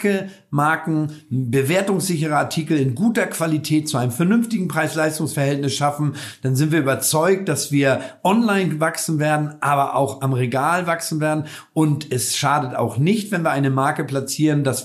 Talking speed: 150 wpm